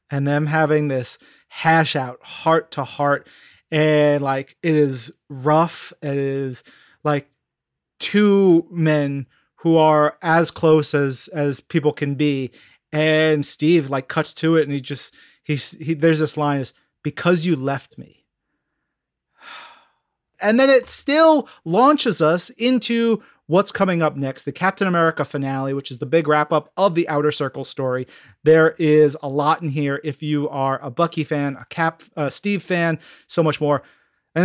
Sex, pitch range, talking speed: male, 145-185 Hz, 165 wpm